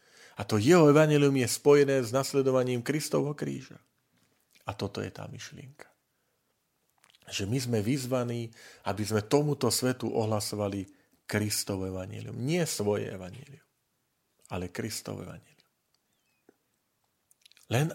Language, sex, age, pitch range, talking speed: Slovak, male, 40-59, 105-135 Hz, 110 wpm